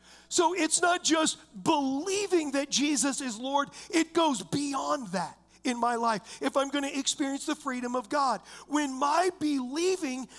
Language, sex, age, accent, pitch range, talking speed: English, male, 40-59, American, 270-325 Hz, 160 wpm